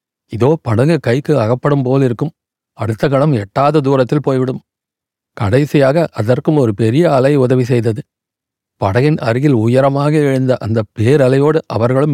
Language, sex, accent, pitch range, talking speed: Tamil, male, native, 115-140 Hz, 120 wpm